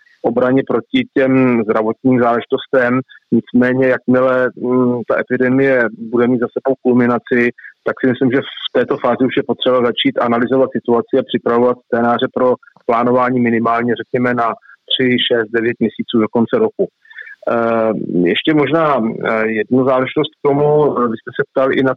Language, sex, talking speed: Czech, male, 145 wpm